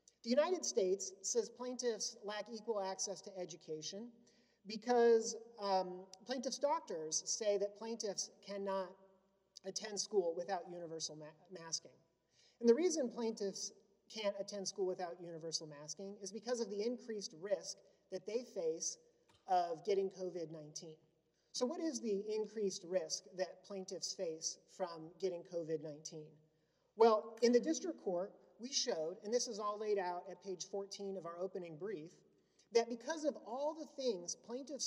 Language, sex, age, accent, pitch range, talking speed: English, male, 40-59, American, 180-240 Hz, 145 wpm